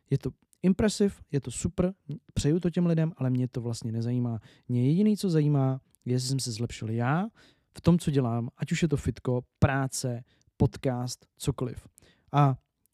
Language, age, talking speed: Czech, 20-39, 175 wpm